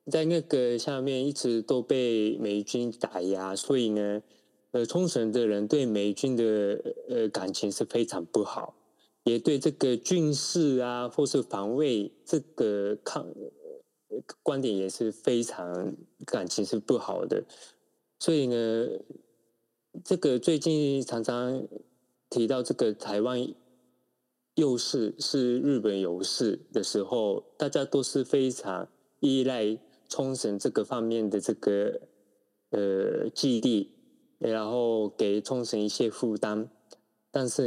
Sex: male